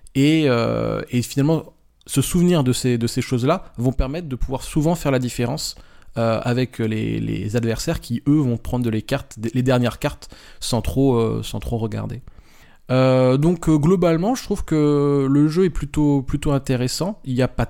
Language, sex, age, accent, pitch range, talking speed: French, male, 20-39, French, 120-150 Hz, 175 wpm